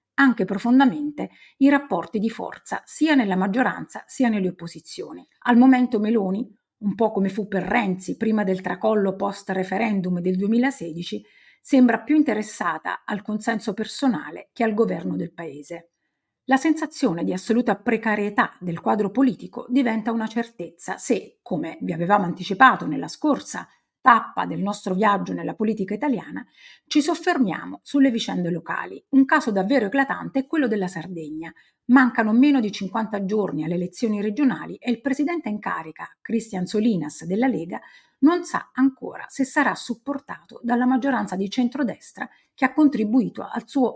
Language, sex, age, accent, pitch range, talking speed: Italian, female, 50-69, native, 195-260 Hz, 150 wpm